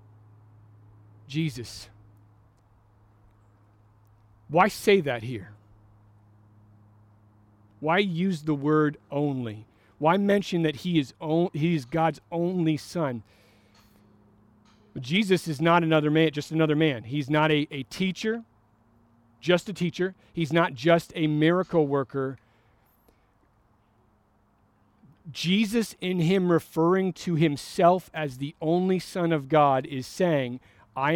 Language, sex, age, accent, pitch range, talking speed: English, male, 40-59, American, 105-165 Hz, 115 wpm